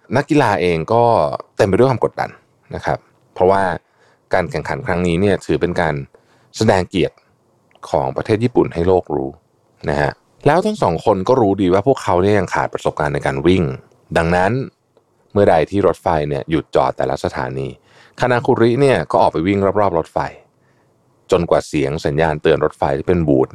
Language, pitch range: Thai, 80-110 Hz